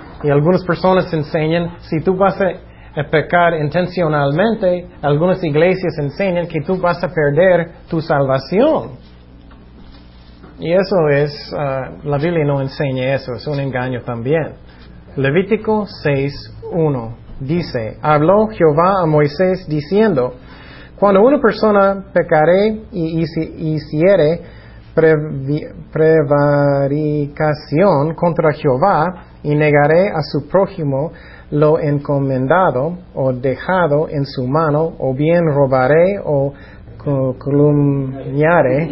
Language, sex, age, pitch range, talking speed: Spanish, male, 30-49, 140-175 Hz, 105 wpm